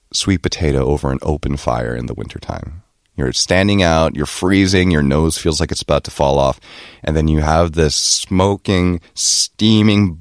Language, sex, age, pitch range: Korean, male, 30-49, 75-105 Hz